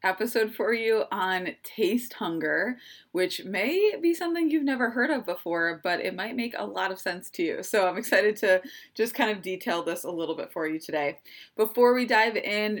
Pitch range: 170-230 Hz